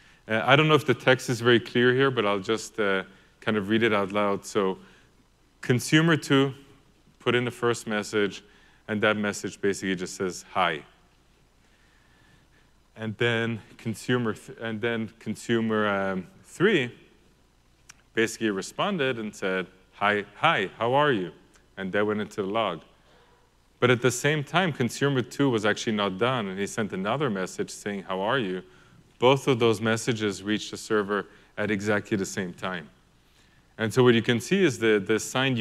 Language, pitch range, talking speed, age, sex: English, 105-125 Hz, 170 wpm, 30-49, male